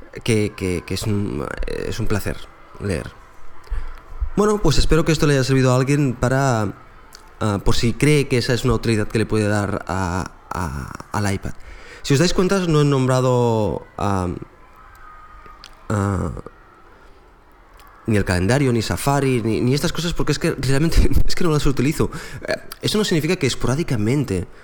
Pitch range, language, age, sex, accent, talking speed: 105-135 Hz, Spanish, 20-39, male, Spanish, 170 wpm